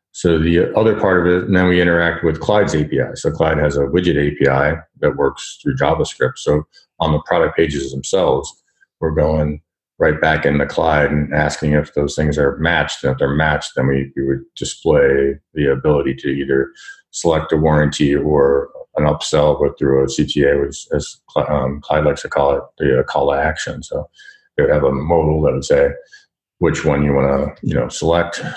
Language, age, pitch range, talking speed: English, 40-59, 70-85 Hz, 195 wpm